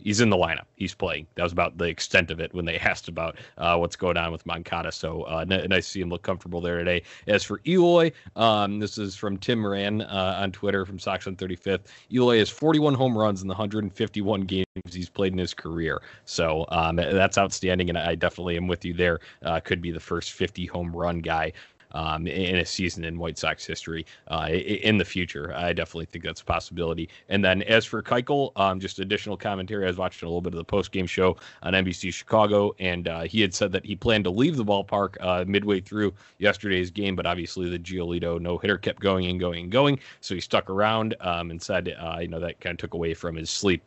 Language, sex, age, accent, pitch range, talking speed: English, male, 30-49, American, 85-100 Hz, 230 wpm